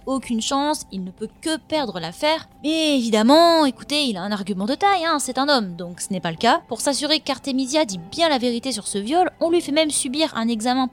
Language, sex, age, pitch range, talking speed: French, female, 20-39, 190-275 Hz, 240 wpm